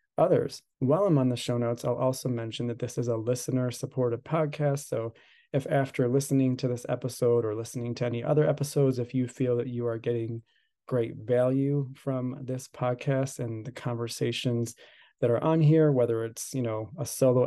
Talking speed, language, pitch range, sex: 185 wpm, English, 115-140 Hz, male